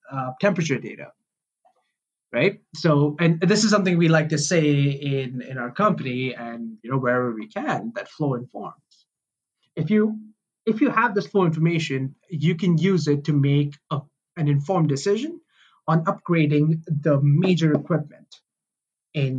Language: English